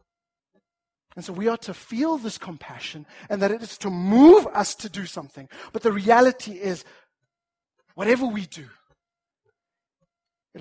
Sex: male